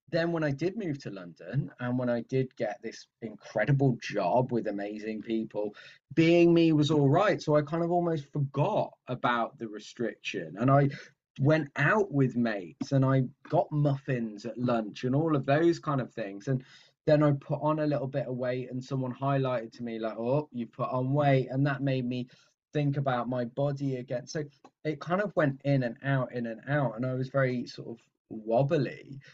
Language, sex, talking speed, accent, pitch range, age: English, male, 205 wpm, British, 115-140 Hz, 20-39